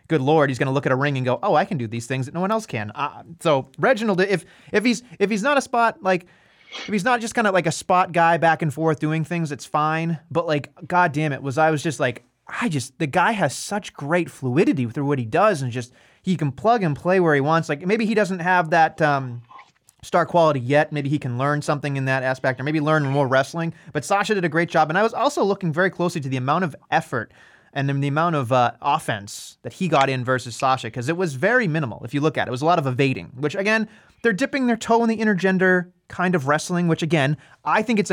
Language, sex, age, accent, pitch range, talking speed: English, male, 30-49, American, 140-185 Hz, 265 wpm